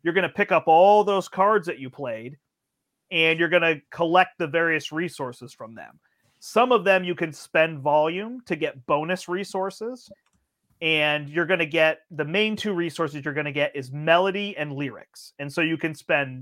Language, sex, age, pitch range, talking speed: English, male, 30-49, 150-190 Hz, 195 wpm